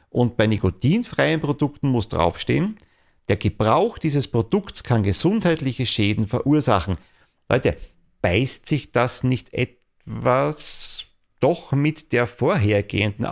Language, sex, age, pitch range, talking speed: German, male, 50-69, 95-135 Hz, 110 wpm